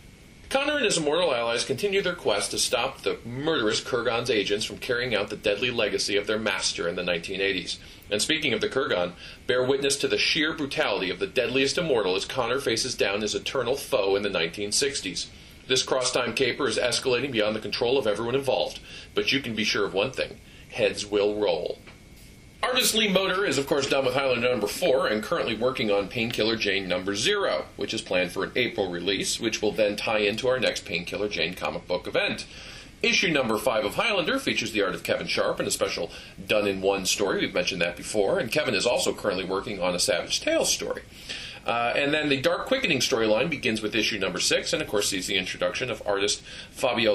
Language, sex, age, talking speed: English, male, 40-59, 210 wpm